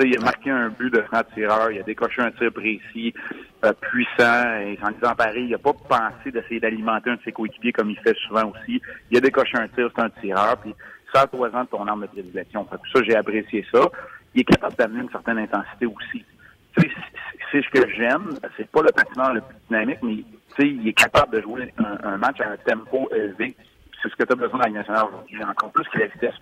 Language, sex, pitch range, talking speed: French, male, 115-140 Hz, 230 wpm